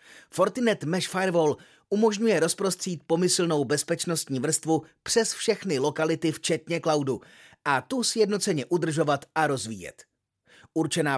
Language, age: Czech, 30-49